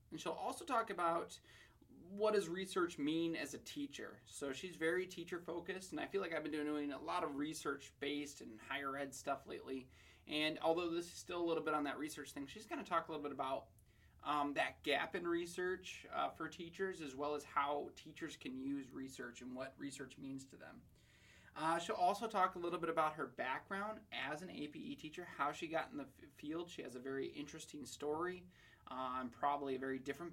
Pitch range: 140-175 Hz